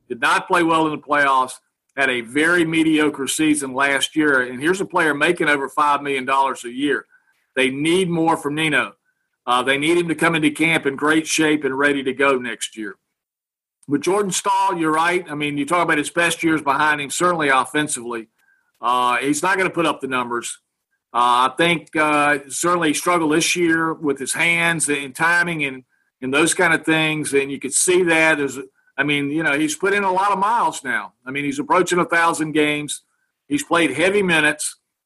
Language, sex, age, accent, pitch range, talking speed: English, male, 50-69, American, 140-170 Hz, 205 wpm